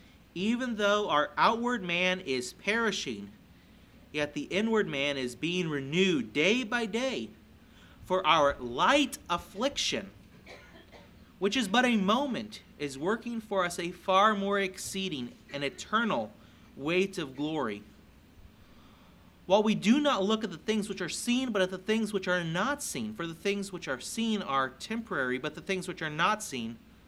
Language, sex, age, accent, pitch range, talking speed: English, male, 30-49, American, 160-220 Hz, 160 wpm